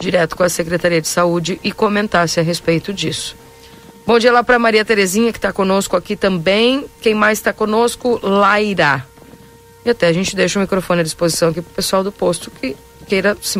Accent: Brazilian